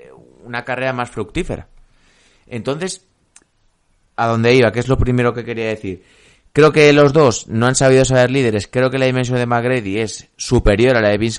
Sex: male